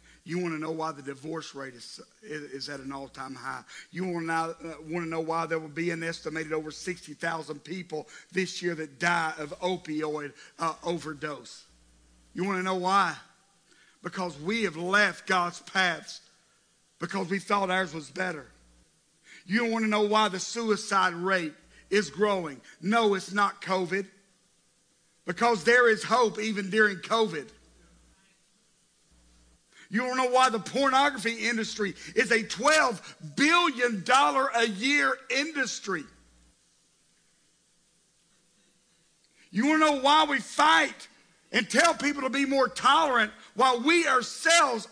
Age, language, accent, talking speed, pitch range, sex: 50-69, English, American, 140 wpm, 145-215 Hz, male